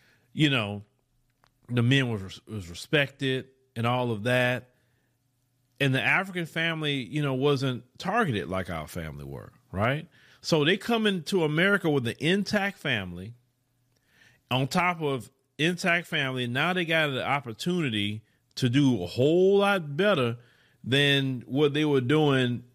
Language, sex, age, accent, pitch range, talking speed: English, male, 40-59, American, 125-180 Hz, 140 wpm